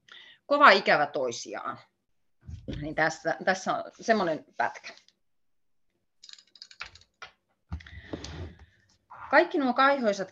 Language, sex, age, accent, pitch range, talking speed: Finnish, female, 30-49, native, 145-185 Hz, 70 wpm